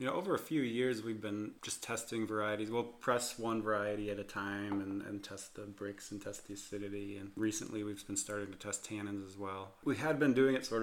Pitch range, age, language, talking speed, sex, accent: 105-120 Hz, 30-49, English, 240 wpm, male, American